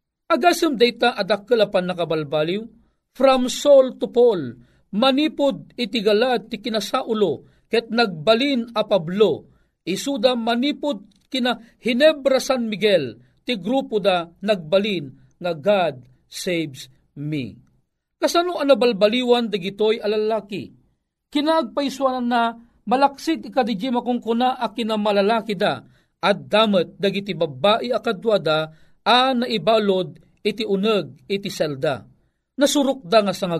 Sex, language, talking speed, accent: male, Filipino, 115 wpm, native